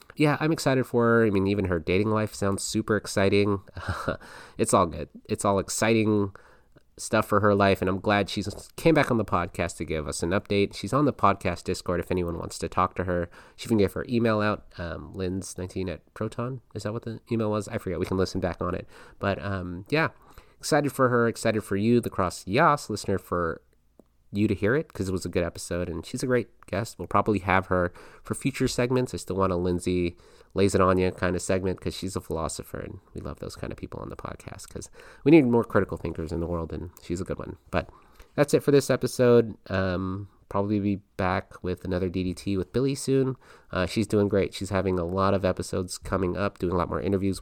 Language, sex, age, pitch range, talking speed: English, male, 30-49, 90-115 Hz, 230 wpm